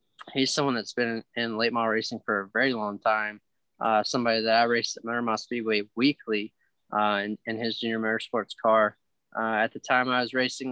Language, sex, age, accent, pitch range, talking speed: English, male, 20-39, American, 105-120 Hz, 205 wpm